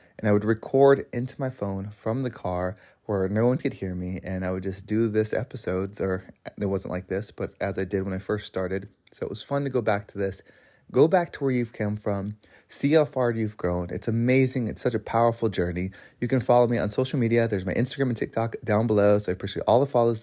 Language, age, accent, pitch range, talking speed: English, 20-39, American, 100-125 Hz, 250 wpm